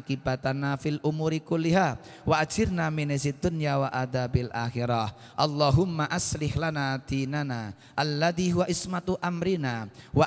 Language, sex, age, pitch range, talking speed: Indonesian, male, 20-39, 125-150 Hz, 115 wpm